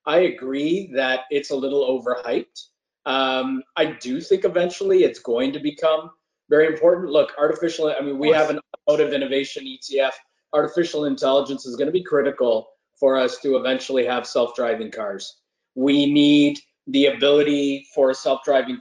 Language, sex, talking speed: English, male, 165 wpm